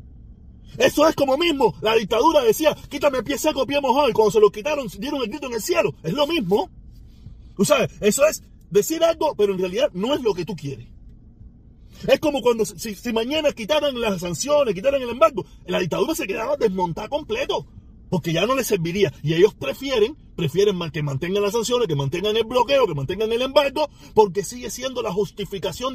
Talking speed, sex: 200 wpm, male